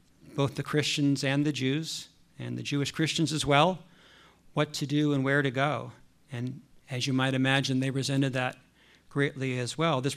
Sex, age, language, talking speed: male, 50-69, English, 185 wpm